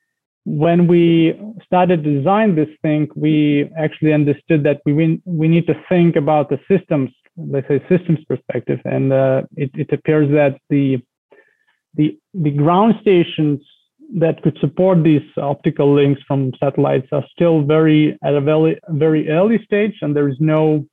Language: English